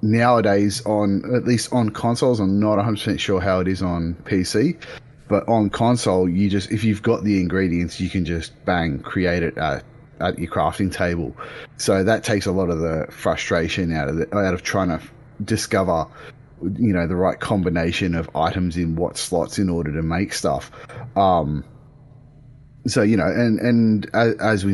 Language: English